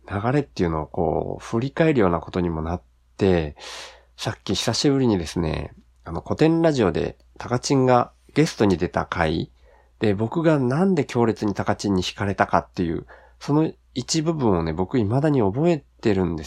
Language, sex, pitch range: Japanese, male, 85-130 Hz